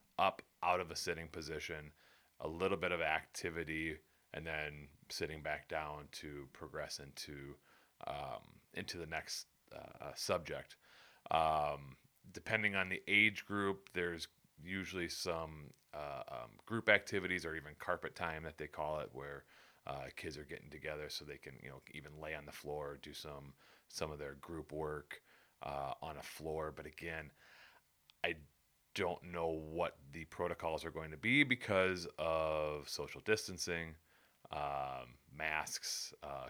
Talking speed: 150 wpm